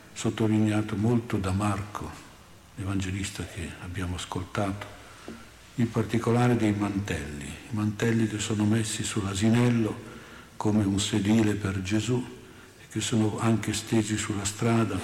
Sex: male